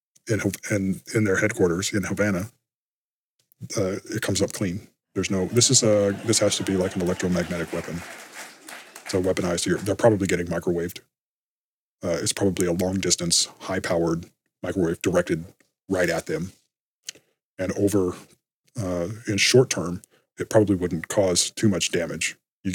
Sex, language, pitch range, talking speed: male, English, 85-105 Hz, 155 wpm